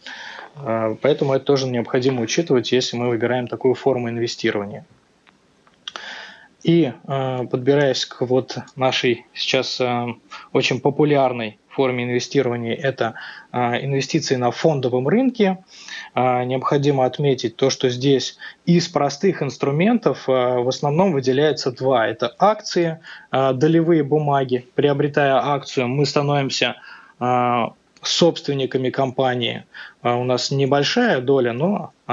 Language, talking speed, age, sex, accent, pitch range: Russian, 95 wpm, 20-39, male, native, 125-155 Hz